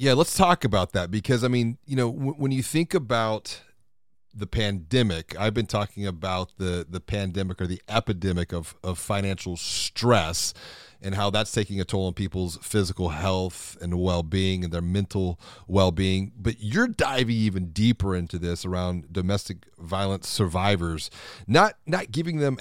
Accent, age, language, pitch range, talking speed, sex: American, 40-59, English, 95-130 Hz, 170 wpm, male